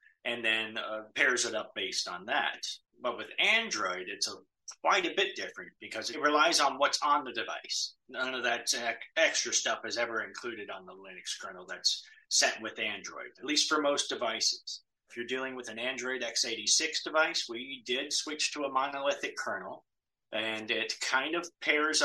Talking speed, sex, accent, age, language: 180 wpm, male, American, 30-49, English